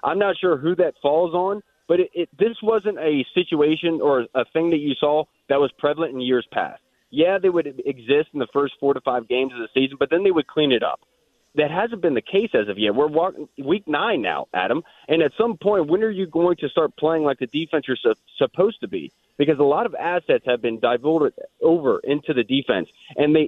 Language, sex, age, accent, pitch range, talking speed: English, male, 30-49, American, 130-170 Hz, 225 wpm